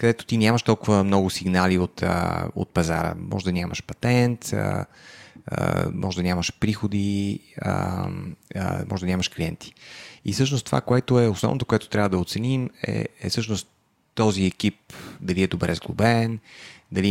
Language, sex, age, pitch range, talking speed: Bulgarian, male, 30-49, 95-115 Hz, 145 wpm